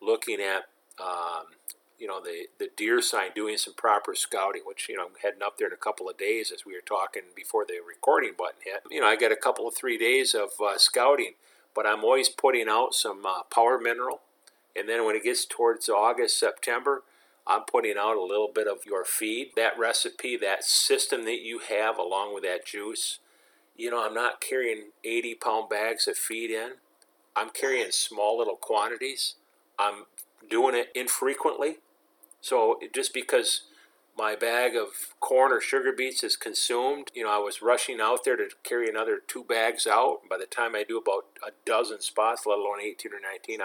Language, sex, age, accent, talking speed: English, male, 50-69, American, 195 wpm